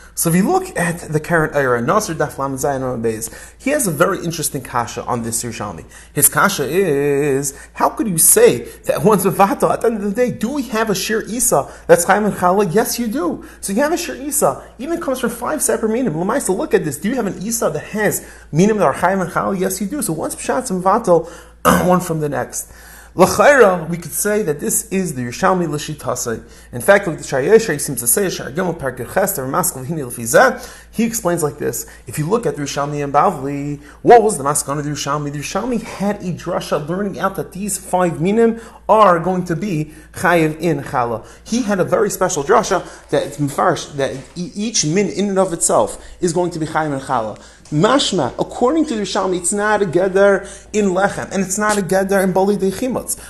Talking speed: 215 wpm